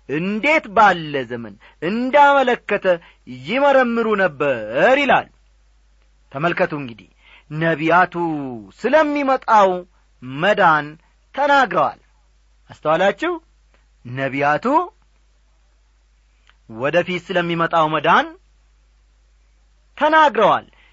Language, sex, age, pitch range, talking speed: Amharic, male, 40-59, 150-240 Hz, 55 wpm